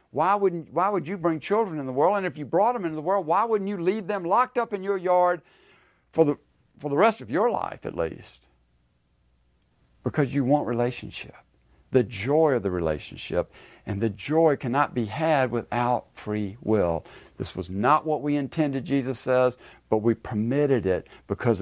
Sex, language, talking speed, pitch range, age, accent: male, English, 185 wpm, 105-150 Hz, 60-79, American